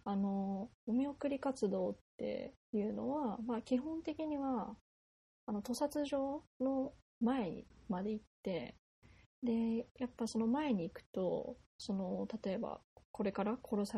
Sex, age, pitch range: female, 20-39, 200-250 Hz